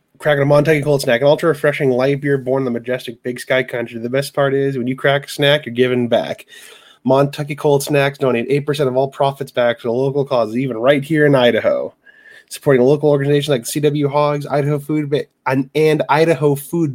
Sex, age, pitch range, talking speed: male, 20-39, 125-150 Hz, 210 wpm